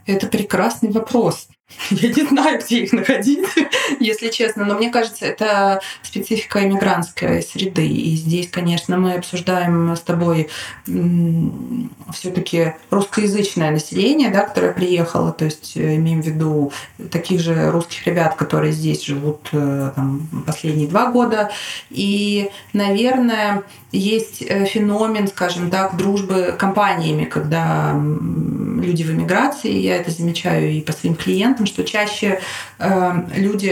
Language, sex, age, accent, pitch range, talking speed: Russian, female, 20-39, native, 170-210 Hz, 125 wpm